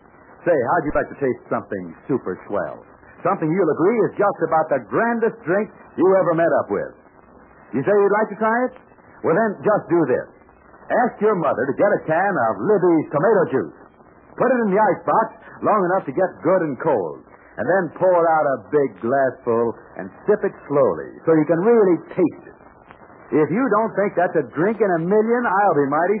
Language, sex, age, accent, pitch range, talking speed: English, male, 60-79, American, 165-220 Hz, 200 wpm